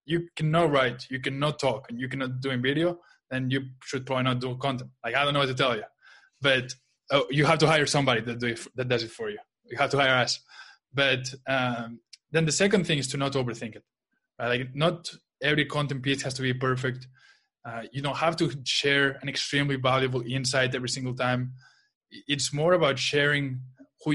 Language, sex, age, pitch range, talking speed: English, male, 20-39, 130-150 Hz, 215 wpm